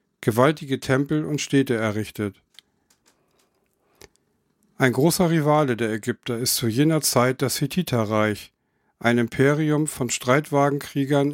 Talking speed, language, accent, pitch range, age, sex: 105 wpm, German, German, 120-150 Hz, 50-69, male